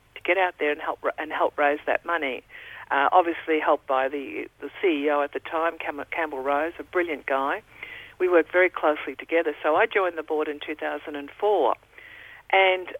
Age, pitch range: 50-69, 160-195 Hz